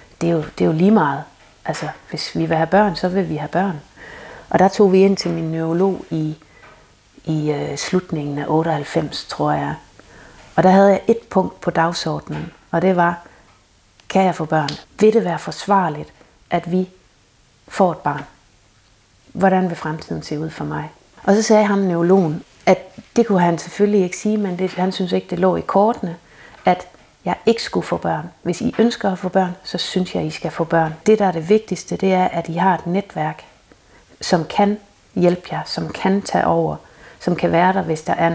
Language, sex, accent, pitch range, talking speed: Danish, female, native, 160-190 Hz, 200 wpm